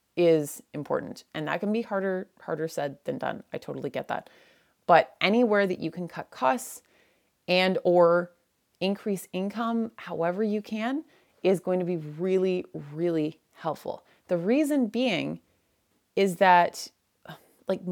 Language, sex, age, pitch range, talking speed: English, female, 30-49, 165-205 Hz, 140 wpm